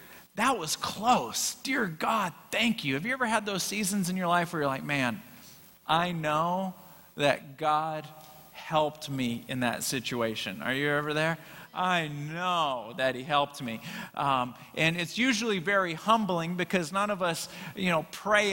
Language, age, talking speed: English, 40-59, 170 wpm